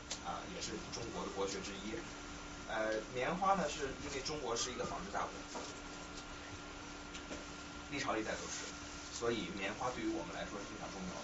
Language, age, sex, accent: Chinese, 30-49, male, native